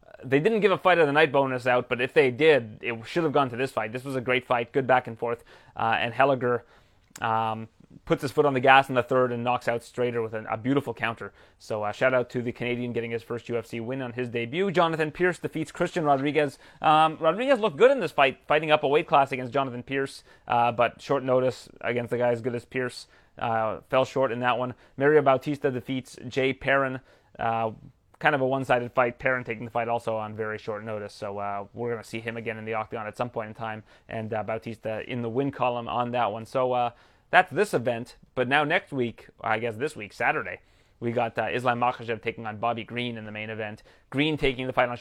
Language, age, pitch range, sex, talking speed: English, 30-49, 115-135 Hz, male, 245 wpm